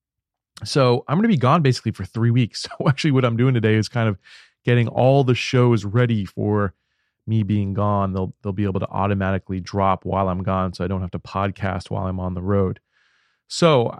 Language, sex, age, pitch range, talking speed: English, male, 30-49, 100-130 Hz, 215 wpm